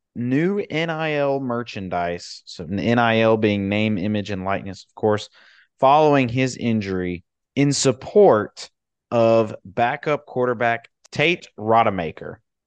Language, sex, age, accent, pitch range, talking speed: English, male, 30-49, American, 100-130 Hz, 105 wpm